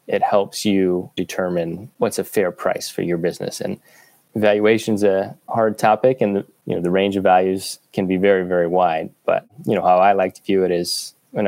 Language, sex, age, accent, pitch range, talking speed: English, male, 20-39, American, 90-100 Hz, 210 wpm